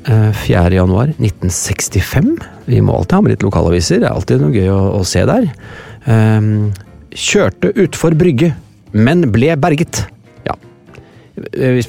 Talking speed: 130 wpm